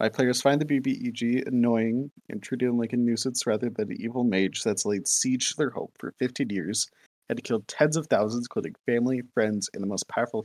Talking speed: 205 wpm